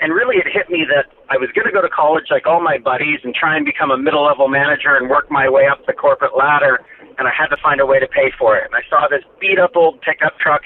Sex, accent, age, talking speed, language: male, American, 40-59, 285 wpm, English